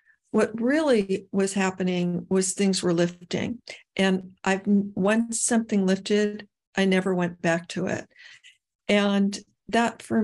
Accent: American